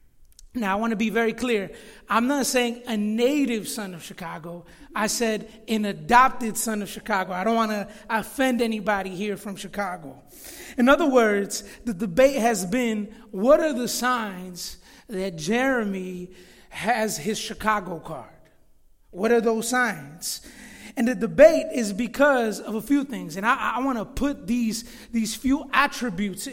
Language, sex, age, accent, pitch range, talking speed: English, male, 30-49, American, 210-250 Hz, 160 wpm